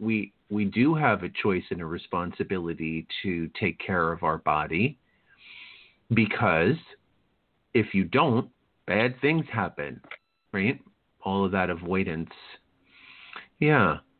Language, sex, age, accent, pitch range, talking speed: English, male, 50-69, American, 95-125 Hz, 120 wpm